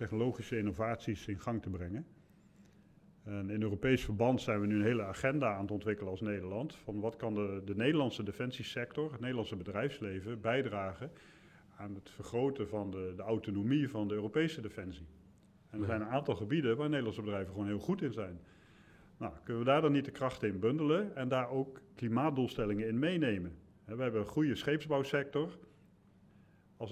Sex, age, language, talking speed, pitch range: male, 50-69, Dutch, 175 wpm, 105-135 Hz